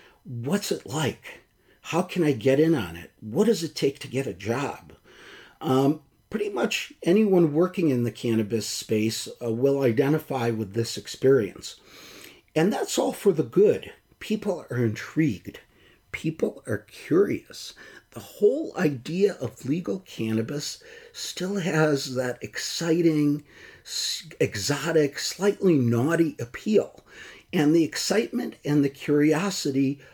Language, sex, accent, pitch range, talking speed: English, male, American, 125-180 Hz, 130 wpm